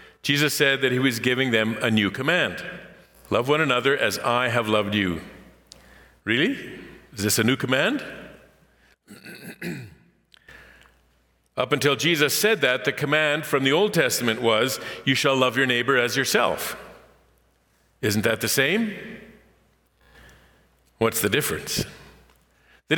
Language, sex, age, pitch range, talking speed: English, male, 50-69, 90-135 Hz, 135 wpm